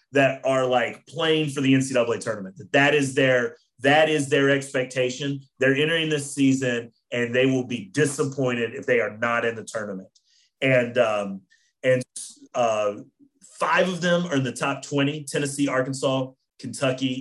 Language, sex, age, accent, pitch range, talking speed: English, male, 30-49, American, 125-150 Hz, 165 wpm